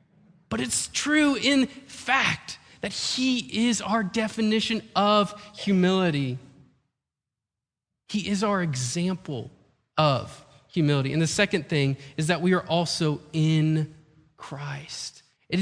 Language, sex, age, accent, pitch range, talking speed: English, male, 20-39, American, 135-185 Hz, 115 wpm